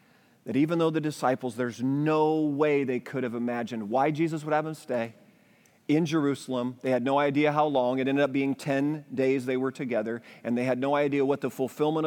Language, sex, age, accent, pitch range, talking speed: English, male, 40-59, American, 130-170 Hz, 215 wpm